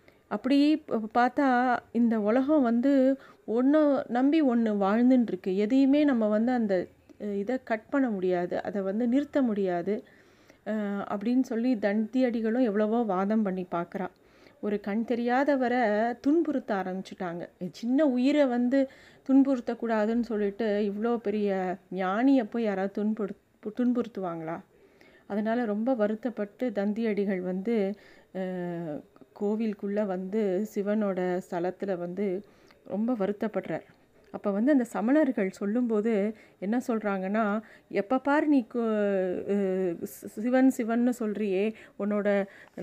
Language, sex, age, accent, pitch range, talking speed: Tamil, female, 30-49, native, 200-245 Hz, 100 wpm